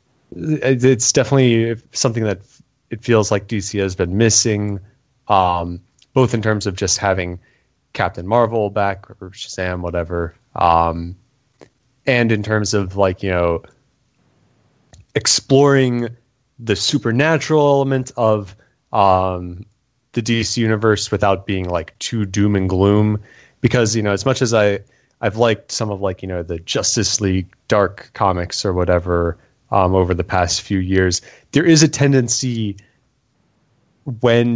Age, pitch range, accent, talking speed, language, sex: 30-49, 95-125 Hz, American, 140 wpm, English, male